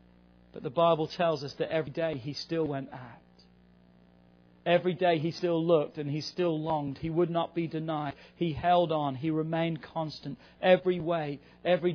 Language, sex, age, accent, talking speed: English, male, 40-59, British, 175 wpm